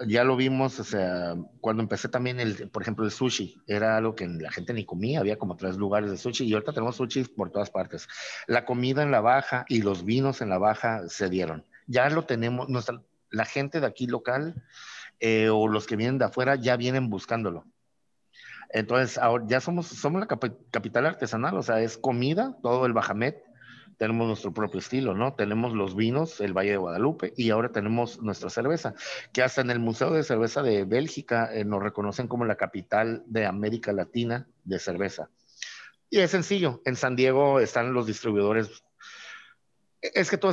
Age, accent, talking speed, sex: 50-69, Mexican, 190 wpm, male